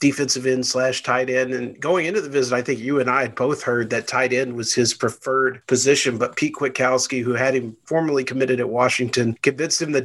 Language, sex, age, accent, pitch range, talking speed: English, male, 40-59, American, 125-140 Hz, 225 wpm